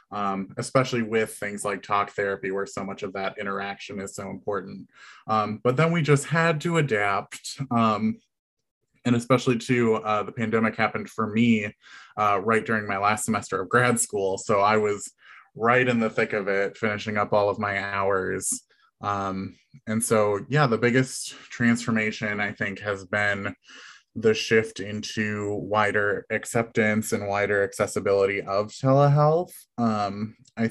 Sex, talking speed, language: male, 160 wpm, English